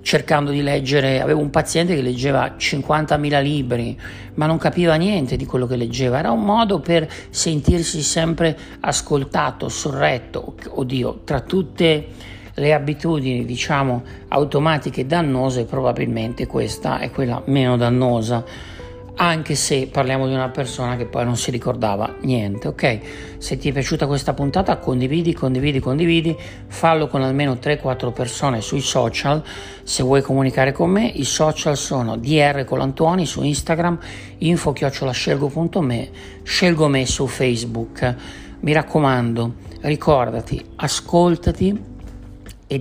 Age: 60-79